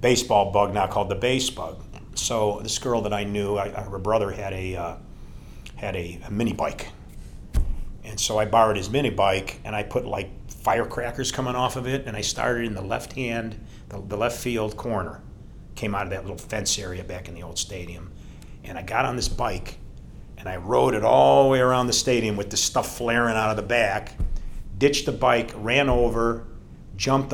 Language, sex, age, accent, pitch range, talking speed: English, male, 50-69, American, 95-120 Hz, 205 wpm